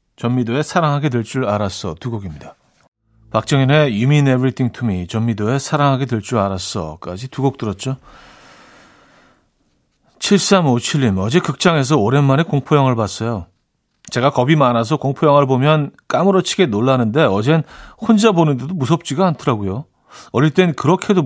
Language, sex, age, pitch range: Korean, male, 40-59, 120-155 Hz